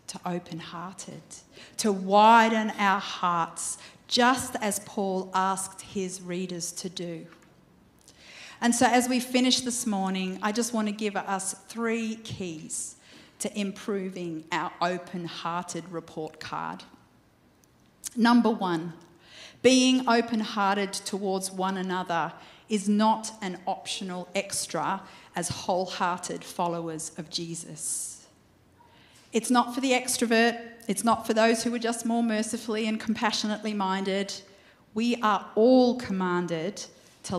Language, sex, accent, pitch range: English, female, Australian, 175-220 Hz